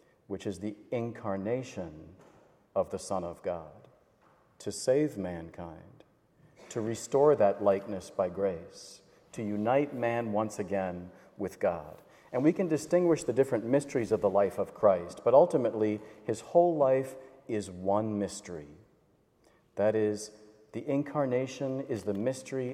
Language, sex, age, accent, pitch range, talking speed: English, male, 40-59, American, 100-135 Hz, 135 wpm